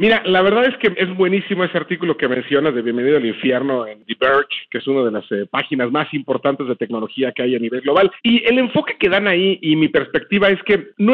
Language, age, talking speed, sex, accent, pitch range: Spanish, 40-59, 235 wpm, male, Mexican, 135-200 Hz